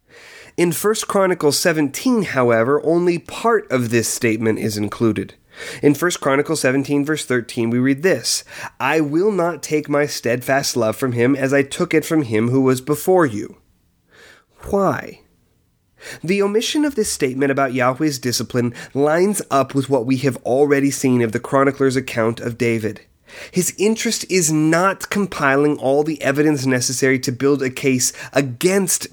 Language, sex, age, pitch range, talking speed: English, male, 30-49, 125-165 Hz, 160 wpm